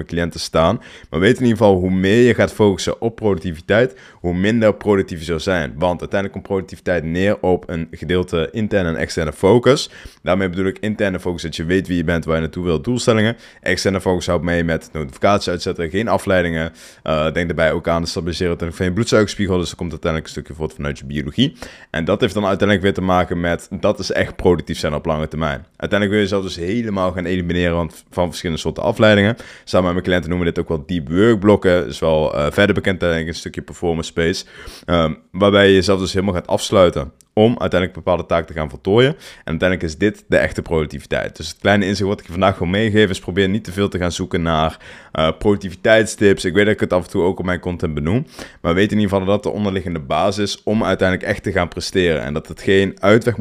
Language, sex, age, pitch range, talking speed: Dutch, male, 20-39, 85-100 Hz, 230 wpm